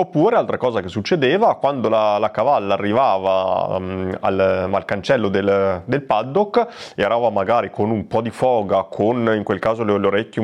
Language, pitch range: Italian, 105-135 Hz